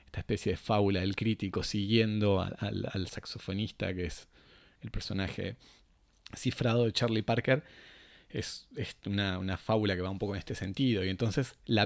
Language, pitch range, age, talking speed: Spanish, 105-130 Hz, 30-49, 170 wpm